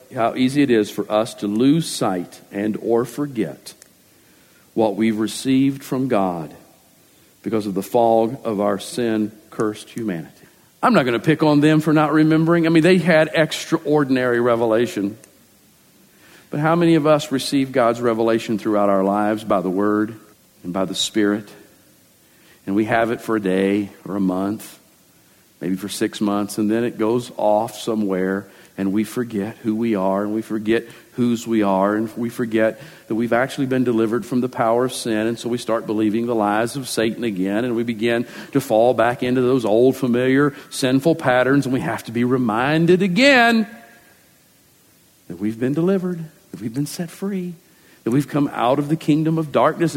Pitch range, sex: 110-155 Hz, male